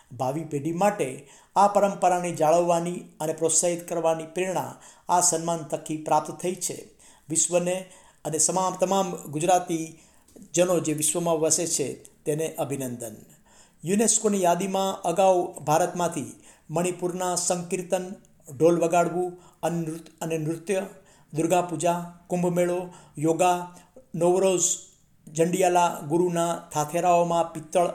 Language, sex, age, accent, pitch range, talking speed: Gujarati, male, 60-79, native, 160-180 Hz, 100 wpm